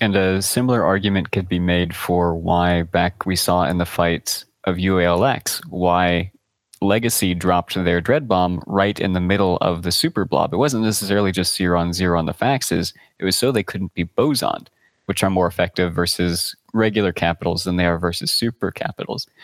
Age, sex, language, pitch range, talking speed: 30-49, male, English, 90-105 Hz, 190 wpm